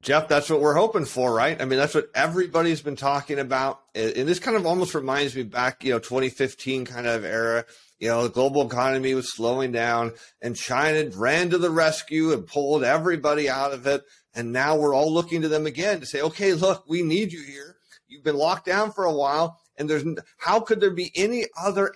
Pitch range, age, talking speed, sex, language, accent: 140-180 Hz, 30-49, 220 wpm, male, English, American